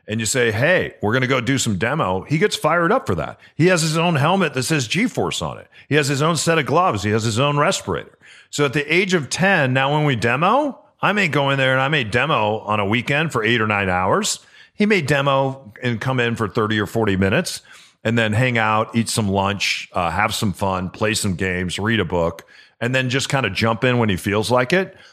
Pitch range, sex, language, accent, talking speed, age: 105-145 Hz, male, English, American, 255 wpm, 40-59